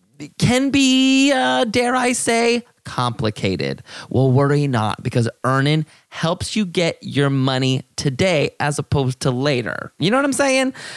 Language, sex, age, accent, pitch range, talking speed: English, male, 30-49, American, 130-200 Hz, 150 wpm